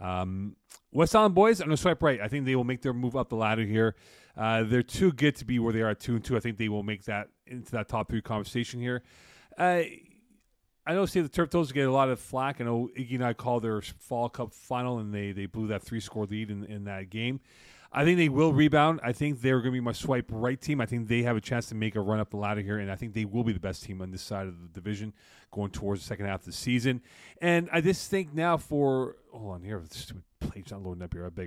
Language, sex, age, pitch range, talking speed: English, male, 30-49, 110-140 Hz, 285 wpm